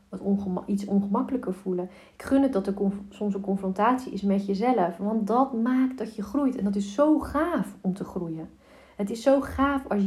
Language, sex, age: Dutch, female, 40-59